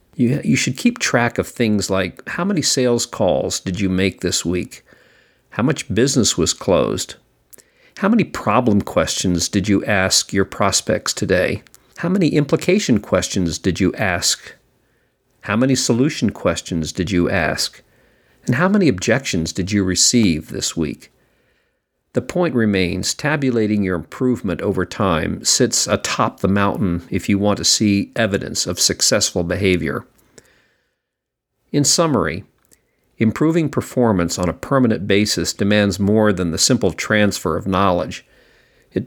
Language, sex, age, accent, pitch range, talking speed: English, male, 50-69, American, 90-120 Hz, 145 wpm